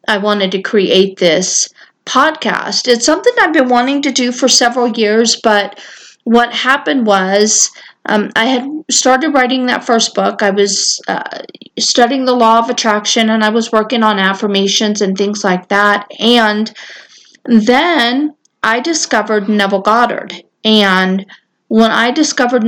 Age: 40-59